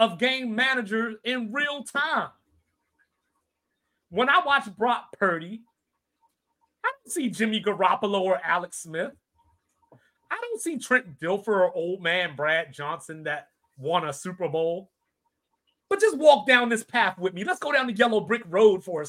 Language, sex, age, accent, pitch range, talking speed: English, male, 30-49, American, 175-255 Hz, 160 wpm